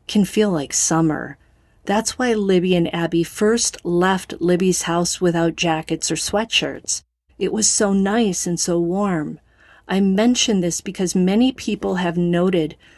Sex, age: female, 40-59